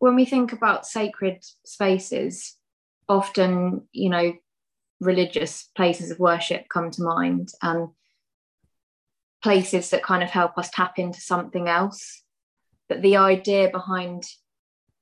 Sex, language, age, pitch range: female, English, 20-39, 175-200 Hz